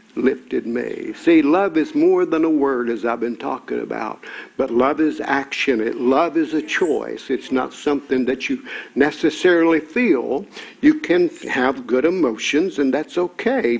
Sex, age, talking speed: male, 60-79, 165 wpm